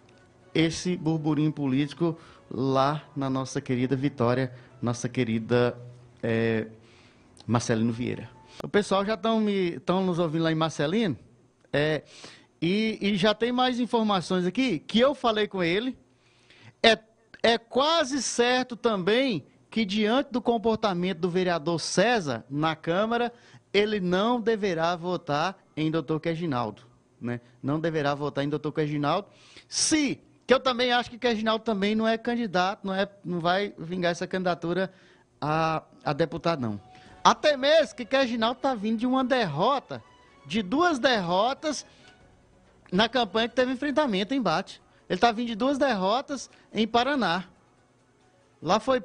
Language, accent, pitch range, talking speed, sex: Portuguese, Brazilian, 140-235 Hz, 140 wpm, male